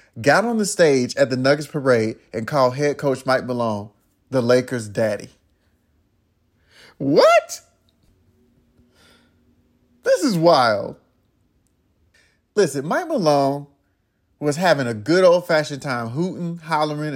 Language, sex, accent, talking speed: English, male, American, 110 wpm